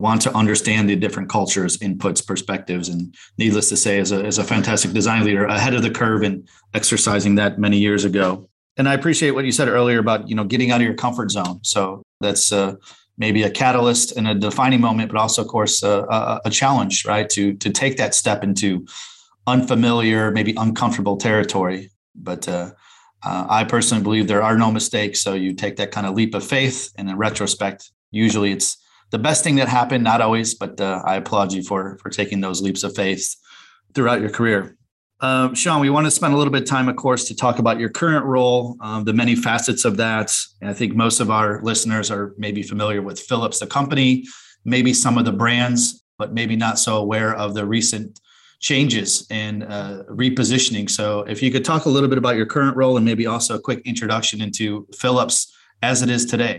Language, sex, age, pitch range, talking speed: English, male, 30-49, 100-120 Hz, 210 wpm